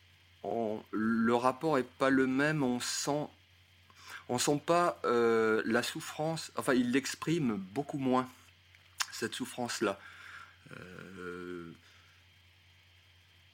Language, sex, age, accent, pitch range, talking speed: French, male, 40-59, French, 90-130 Hz, 105 wpm